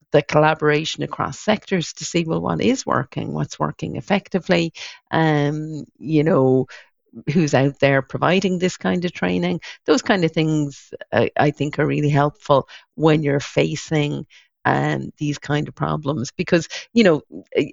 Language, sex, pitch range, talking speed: English, female, 135-155 Hz, 155 wpm